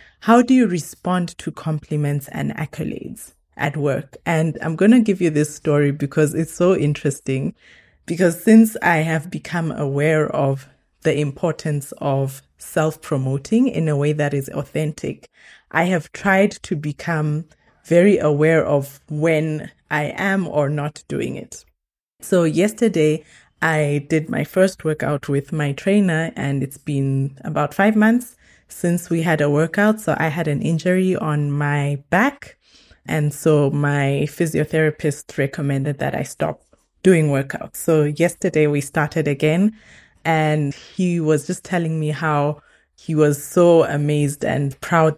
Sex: female